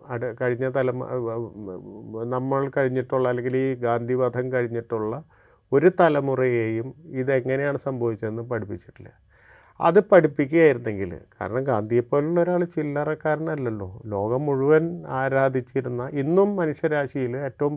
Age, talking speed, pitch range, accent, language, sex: 30-49, 90 wpm, 115-155 Hz, native, Malayalam, male